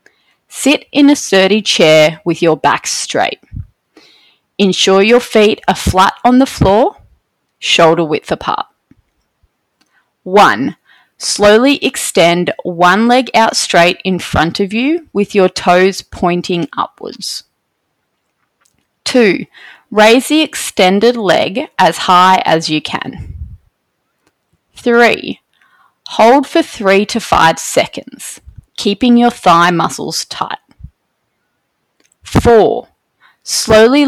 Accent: Australian